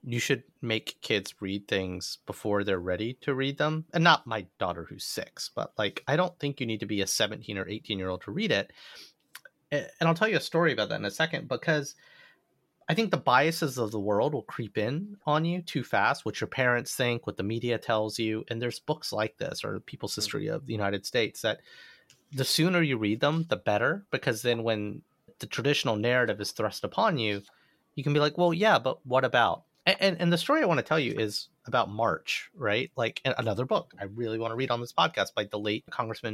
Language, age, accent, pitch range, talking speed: English, 30-49, American, 105-150 Hz, 225 wpm